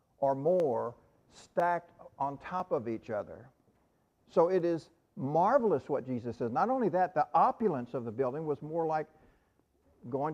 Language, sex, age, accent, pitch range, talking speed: English, male, 60-79, American, 140-195 Hz, 155 wpm